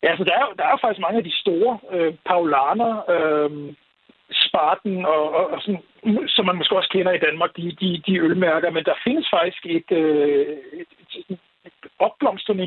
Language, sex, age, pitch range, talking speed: Danish, male, 60-79, 165-215 Hz, 185 wpm